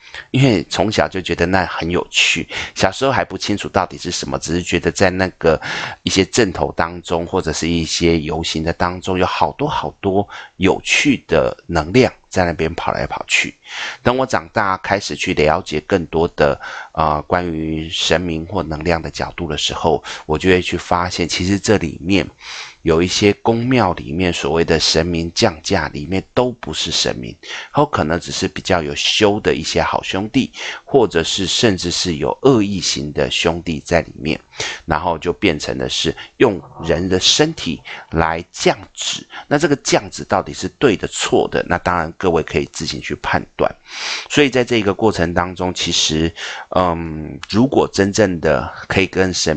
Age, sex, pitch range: 30-49, male, 80-95 Hz